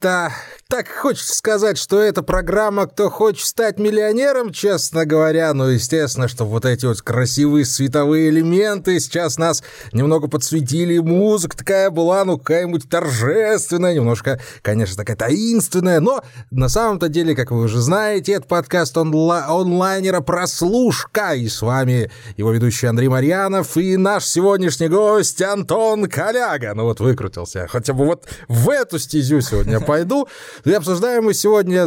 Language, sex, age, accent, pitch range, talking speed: Russian, male, 20-39, native, 125-185 Hz, 145 wpm